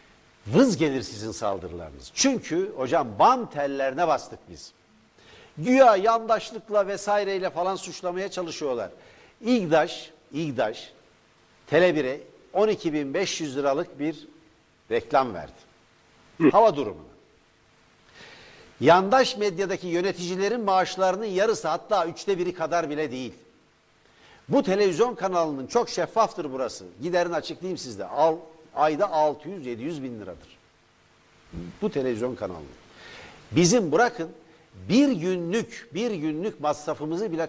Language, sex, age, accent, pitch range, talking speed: Turkish, male, 60-79, native, 150-210 Hz, 100 wpm